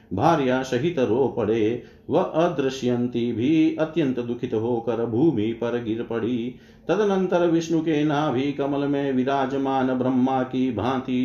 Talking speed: 130 wpm